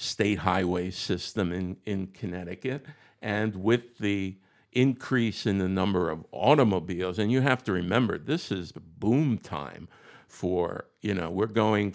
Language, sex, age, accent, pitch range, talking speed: English, male, 50-69, American, 95-115 Hz, 145 wpm